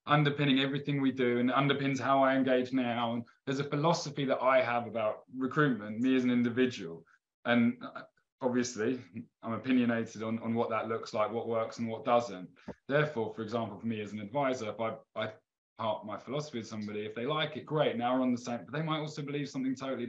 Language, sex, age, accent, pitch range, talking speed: English, male, 20-39, British, 115-130 Hz, 210 wpm